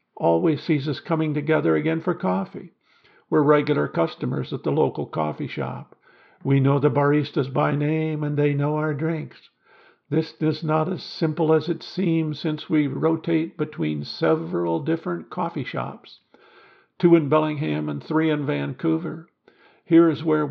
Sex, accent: male, American